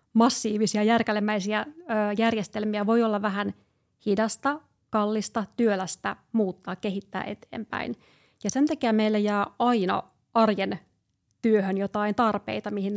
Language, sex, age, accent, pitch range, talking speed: Finnish, female, 30-49, native, 200-225 Hz, 105 wpm